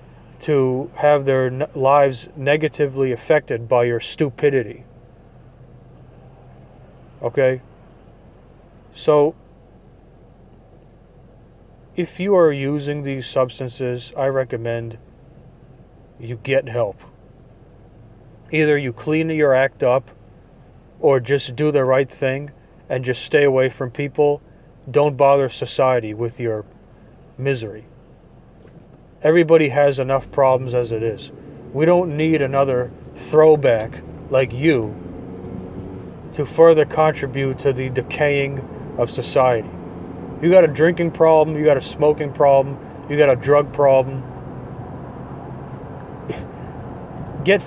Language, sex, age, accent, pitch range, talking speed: English, male, 40-59, American, 125-155 Hz, 105 wpm